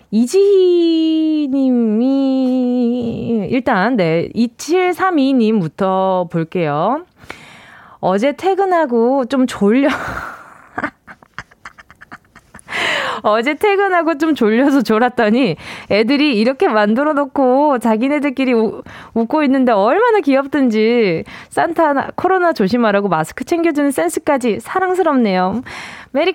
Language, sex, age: Korean, female, 20-39